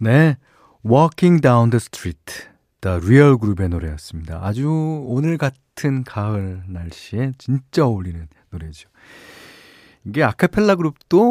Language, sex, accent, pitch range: Korean, male, native, 90-150 Hz